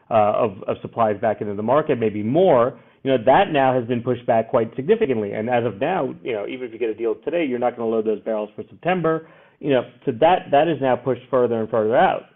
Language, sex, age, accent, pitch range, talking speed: English, male, 30-49, American, 115-145 Hz, 260 wpm